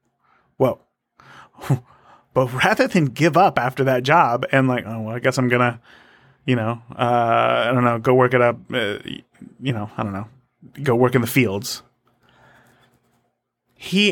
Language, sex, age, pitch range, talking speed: English, male, 30-49, 125-175 Hz, 170 wpm